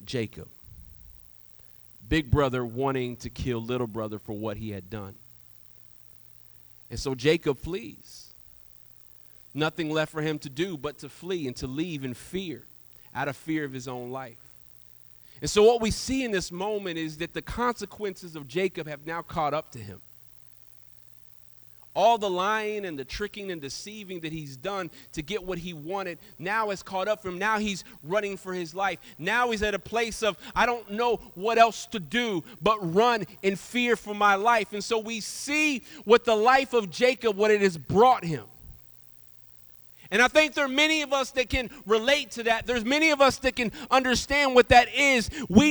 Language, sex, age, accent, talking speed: English, male, 40-59, American, 190 wpm